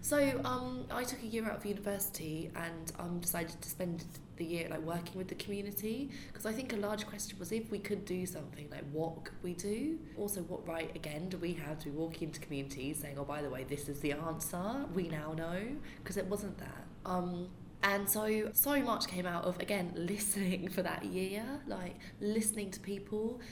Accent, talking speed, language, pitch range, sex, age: British, 210 wpm, English, 155-200 Hz, female, 20-39